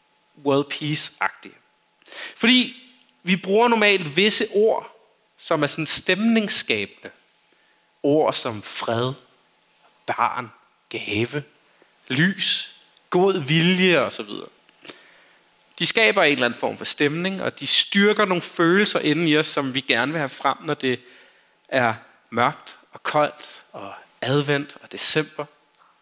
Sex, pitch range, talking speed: male, 135-190 Hz, 120 wpm